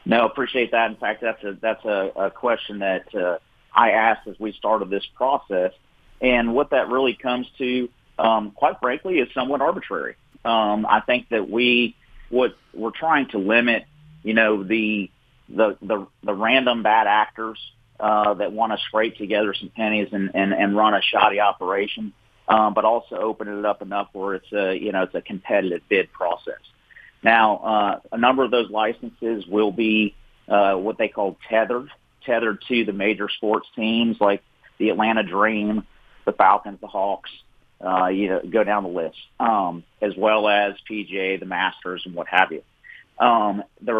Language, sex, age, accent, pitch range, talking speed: English, male, 40-59, American, 100-115 Hz, 180 wpm